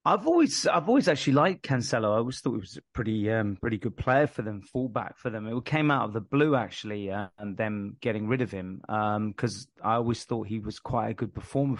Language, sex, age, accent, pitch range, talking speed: English, male, 30-49, British, 105-130 Hz, 245 wpm